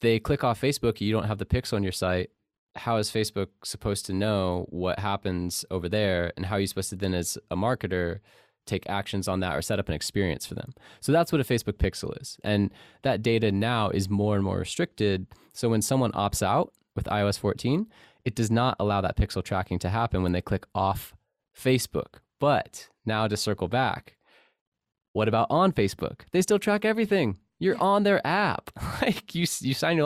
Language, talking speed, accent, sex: English, 205 wpm, American, male